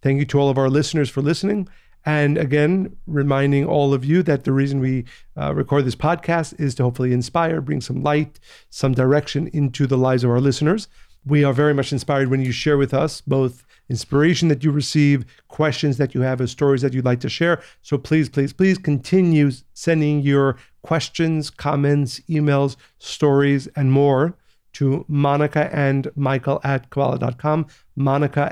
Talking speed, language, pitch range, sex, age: 175 wpm, English, 135-150 Hz, male, 40-59